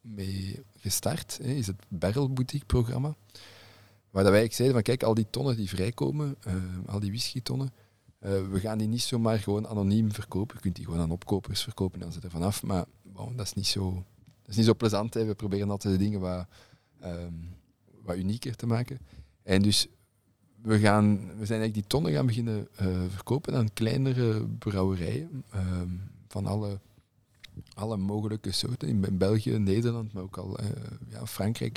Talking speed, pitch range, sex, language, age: 185 wpm, 100-120 Hz, male, Dutch, 40-59